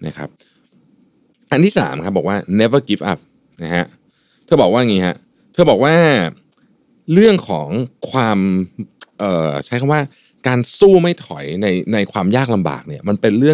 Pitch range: 95-145 Hz